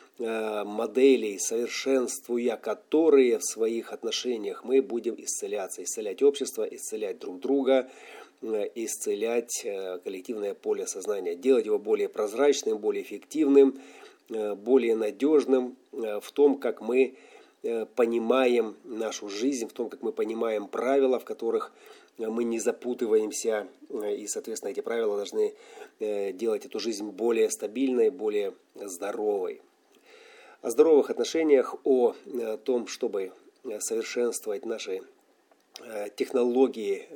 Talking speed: 105 wpm